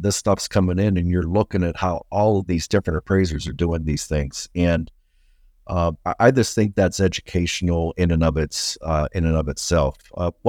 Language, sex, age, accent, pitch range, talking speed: English, male, 50-69, American, 80-95 Hz, 205 wpm